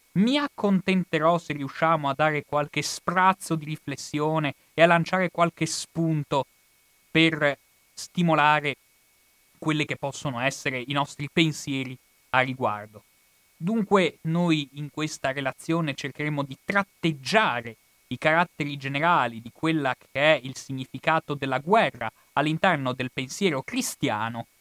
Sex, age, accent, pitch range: male, 30-49, native, 125-160 Hz